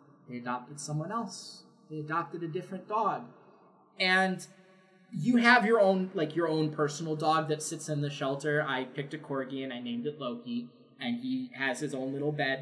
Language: English